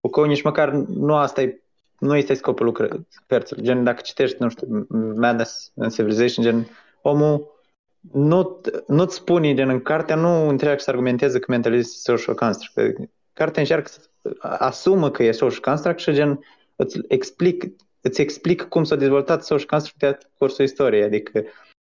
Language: Romanian